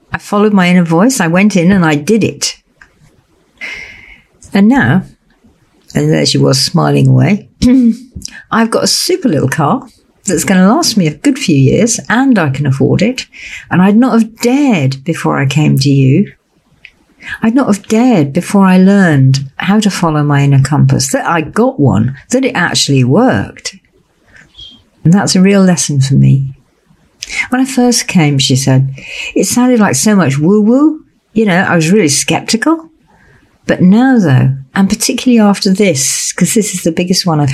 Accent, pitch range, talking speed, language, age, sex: British, 140-210 Hz, 175 wpm, English, 60-79, female